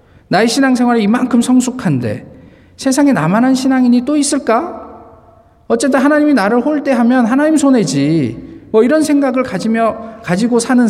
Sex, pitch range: male, 185-250 Hz